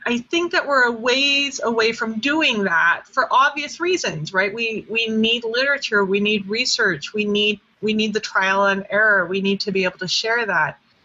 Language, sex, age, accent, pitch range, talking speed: English, female, 30-49, American, 200-260 Hz, 200 wpm